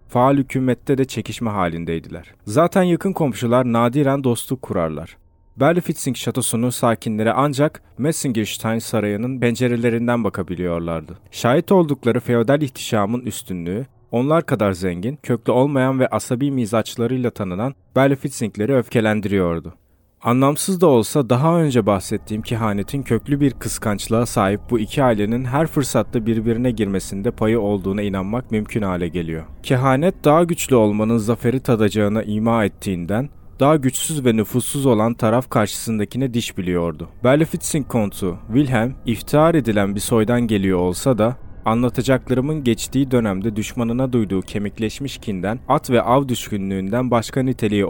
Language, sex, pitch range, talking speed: Turkish, male, 105-135 Hz, 125 wpm